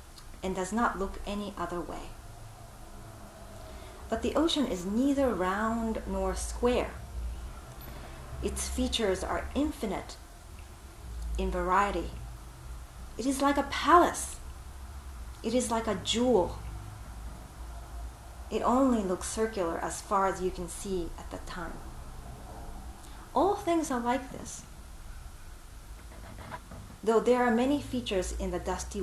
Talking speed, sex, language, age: 120 wpm, female, English, 30-49